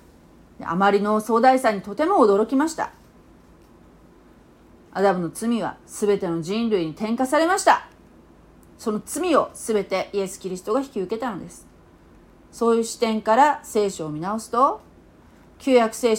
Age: 40-59